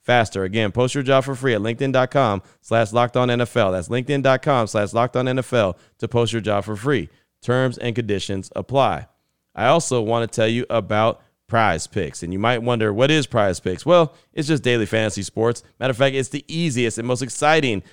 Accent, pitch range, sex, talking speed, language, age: American, 110-140 Hz, male, 190 wpm, English, 30-49